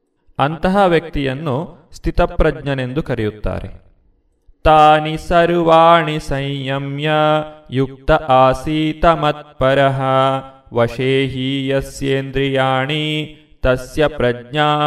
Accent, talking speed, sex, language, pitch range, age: native, 50 wpm, male, Kannada, 135-160 Hz, 30-49